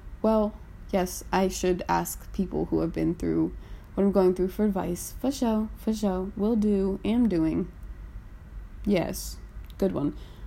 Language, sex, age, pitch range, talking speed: English, female, 20-39, 160-205 Hz, 155 wpm